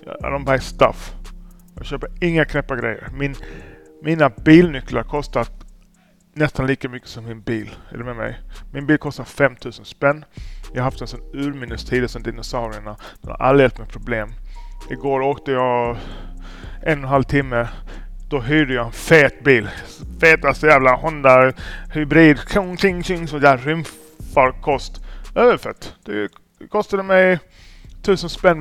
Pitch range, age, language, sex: 115-155 Hz, 30-49, Swedish, male